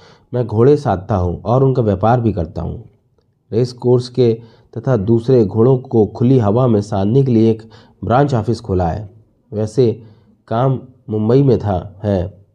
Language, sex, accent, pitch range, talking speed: Hindi, male, native, 105-130 Hz, 165 wpm